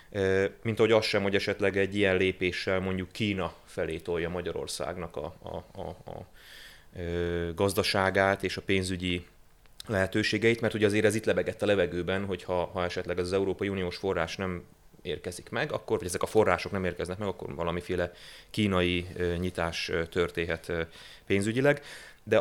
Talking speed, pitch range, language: 150 wpm, 90-105 Hz, Hungarian